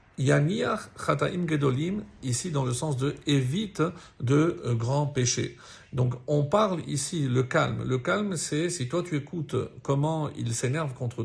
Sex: male